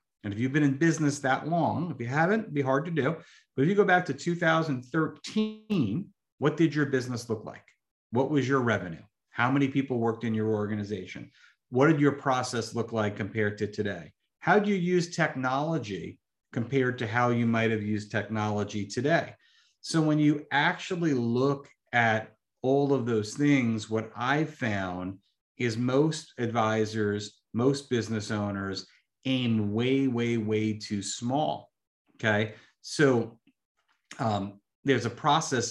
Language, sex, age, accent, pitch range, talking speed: English, male, 40-59, American, 105-135 Hz, 160 wpm